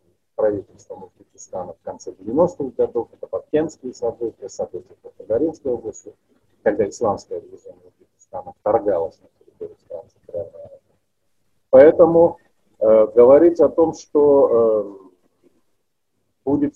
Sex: male